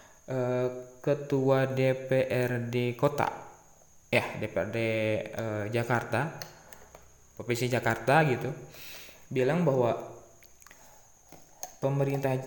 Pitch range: 115-140 Hz